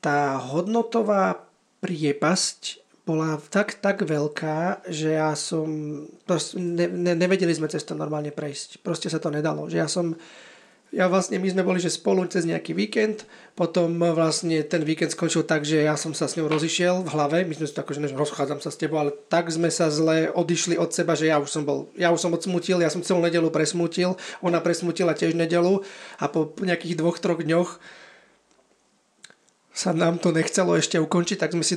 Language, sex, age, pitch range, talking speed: Slovak, male, 30-49, 155-180 Hz, 185 wpm